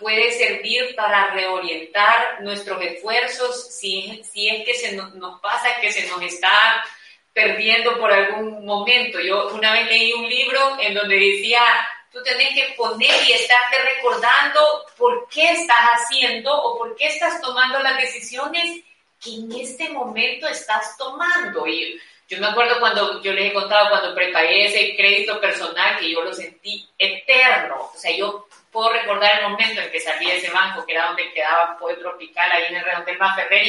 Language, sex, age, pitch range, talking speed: Spanish, female, 30-49, 195-250 Hz, 175 wpm